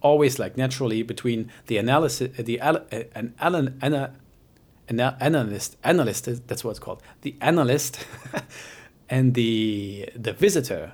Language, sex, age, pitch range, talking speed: English, male, 40-59, 115-140 Hz, 145 wpm